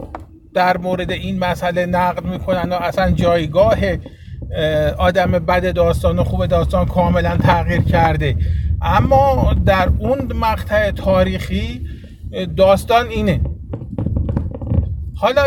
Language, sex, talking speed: Persian, male, 100 wpm